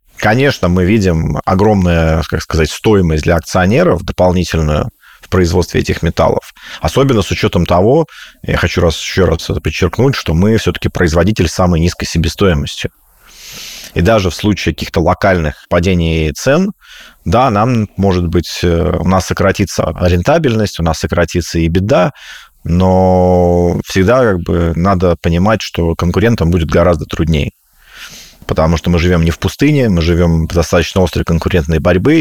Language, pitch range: Russian, 85-100 Hz